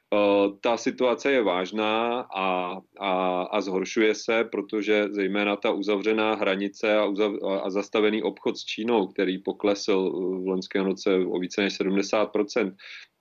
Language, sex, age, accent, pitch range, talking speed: Czech, male, 30-49, native, 95-105 Hz, 125 wpm